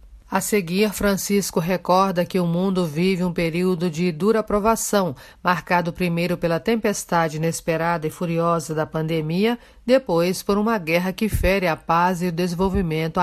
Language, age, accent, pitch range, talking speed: Portuguese, 40-59, Brazilian, 165-205 Hz, 150 wpm